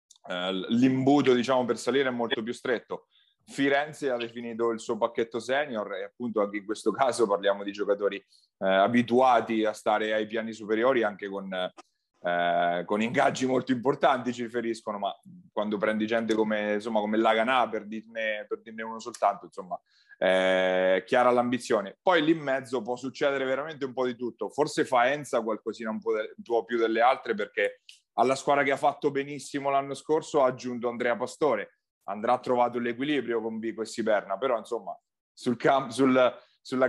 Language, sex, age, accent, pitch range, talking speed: Italian, male, 30-49, native, 110-130 Hz, 170 wpm